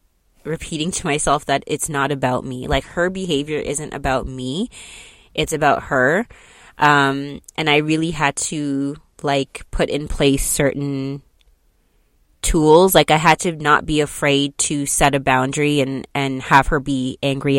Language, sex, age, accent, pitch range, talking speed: English, female, 20-39, American, 135-155 Hz, 155 wpm